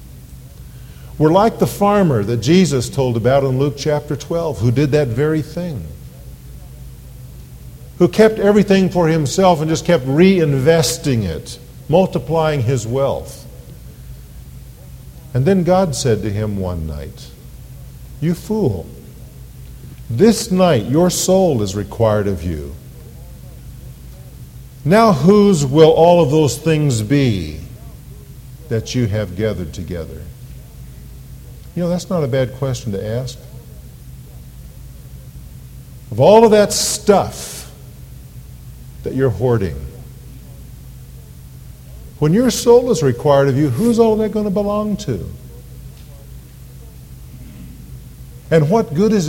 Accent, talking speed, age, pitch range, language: American, 115 wpm, 50-69, 110-180 Hz, English